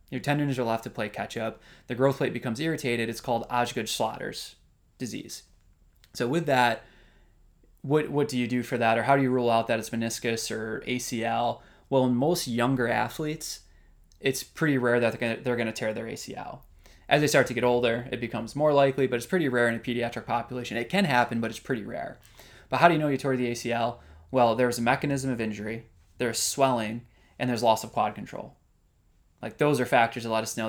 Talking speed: 215 wpm